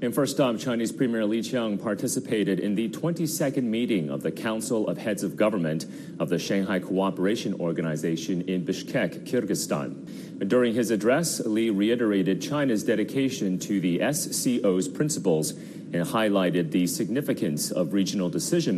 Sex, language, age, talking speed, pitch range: male, English, 40-59, 145 wpm, 95-125 Hz